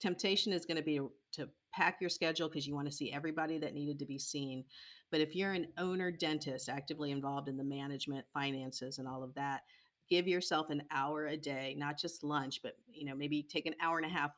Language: English